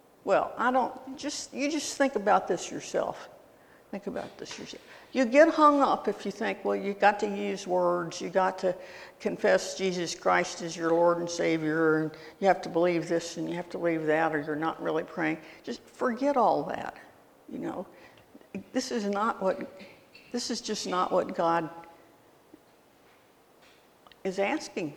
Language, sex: English, female